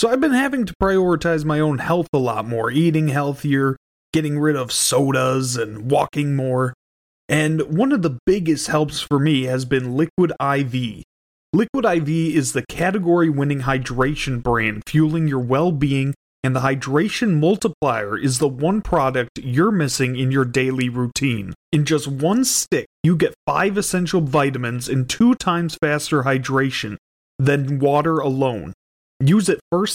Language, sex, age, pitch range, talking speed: English, male, 30-49, 130-165 Hz, 155 wpm